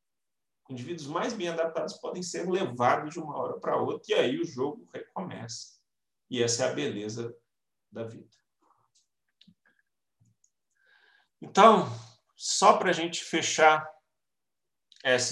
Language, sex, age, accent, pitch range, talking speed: Portuguese, male, 40-59, Brazilian, 120-170 Hz, 120 wpm